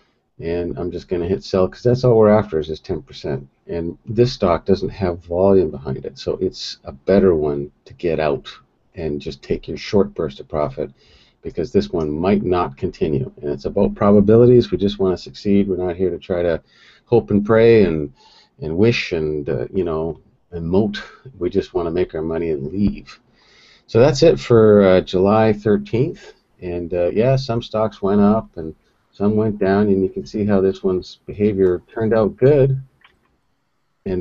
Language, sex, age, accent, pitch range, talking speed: English, male, 50-69, American, 85-110 Hz, 195 wpm